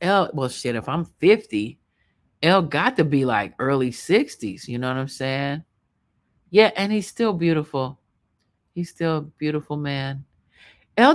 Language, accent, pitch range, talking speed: English, American, 135-170 Hz, 155 wpm